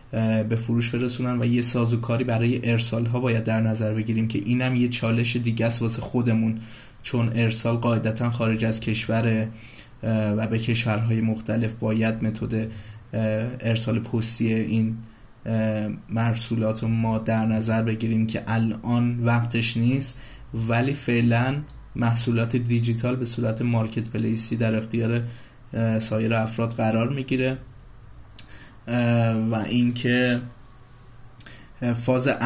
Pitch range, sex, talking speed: 115-120 Hz, male, 115 wpm